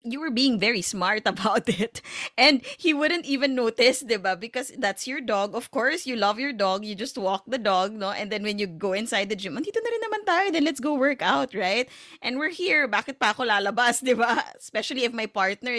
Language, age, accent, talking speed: Filipino, 20-39, native, 225 wpm